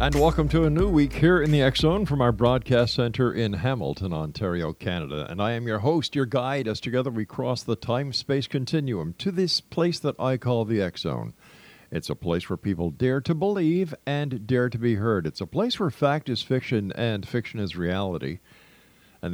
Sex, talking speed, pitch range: male, 200 wpm, 90-125 Hz